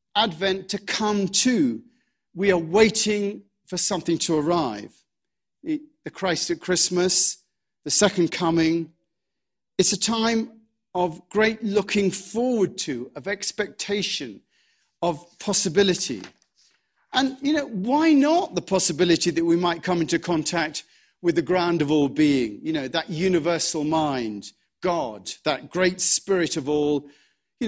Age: 40-59